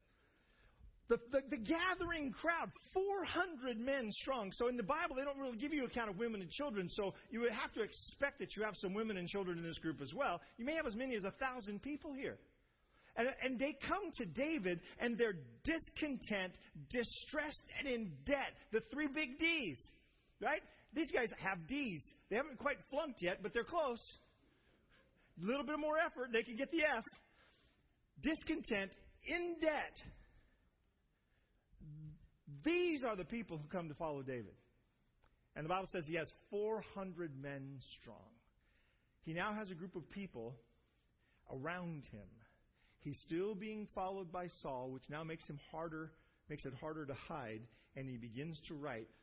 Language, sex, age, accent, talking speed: English, male, 40-59, American, 175 wpm